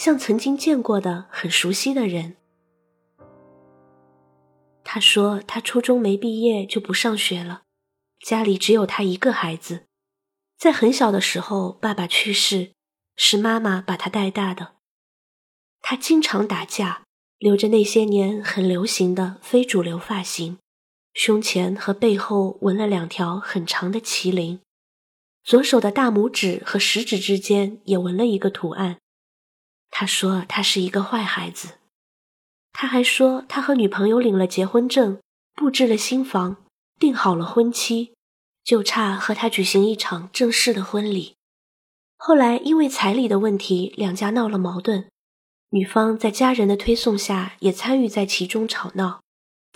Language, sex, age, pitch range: Chinese, female, 20-39, 185-225 Hz